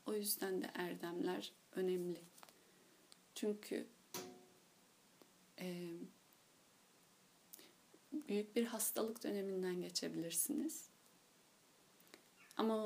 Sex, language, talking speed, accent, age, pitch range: female, Turkish, 60 wpm, native, 30-49, 190-245 Hz